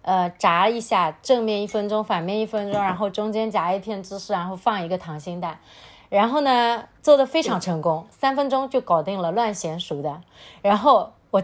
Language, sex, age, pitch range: Chinese, female, 30-49, 190-255 Hz